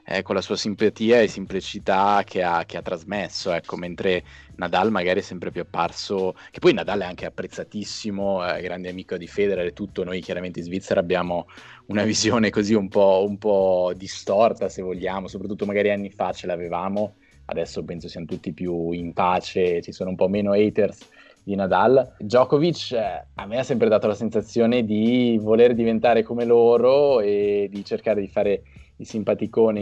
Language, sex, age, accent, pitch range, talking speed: Italian, male, 20-39, native, 90-110 Hz, 180 wpm